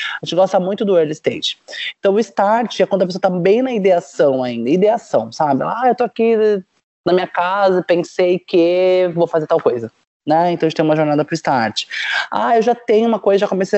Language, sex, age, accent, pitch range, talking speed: Portuguese, male, 20-39, Brazilian, 160-195 Hz, 225 wpm